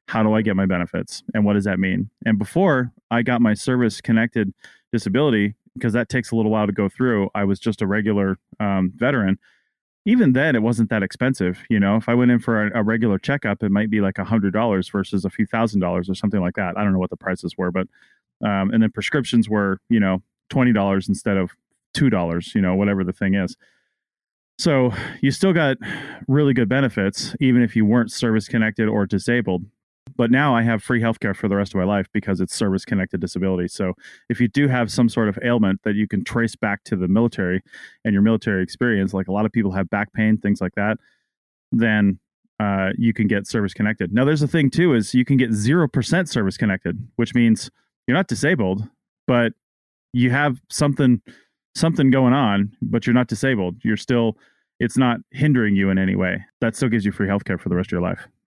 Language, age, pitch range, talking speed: English, 30-49, 100-120 Hz, 215 wpm